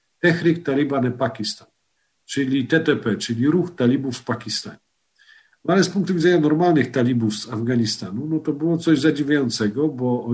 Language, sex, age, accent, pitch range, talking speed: Polish, male, 50-69, native, 120-165 Hz, 150 wpm